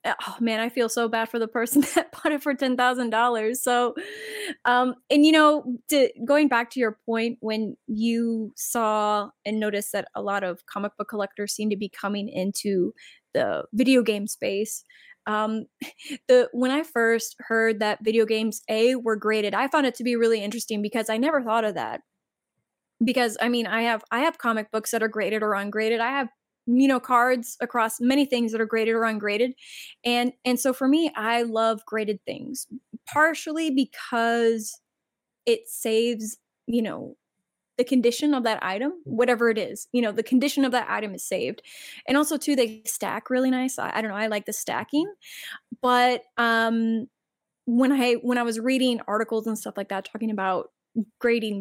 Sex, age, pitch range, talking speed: female, 20-39, 220-255 Hz, 190 wpm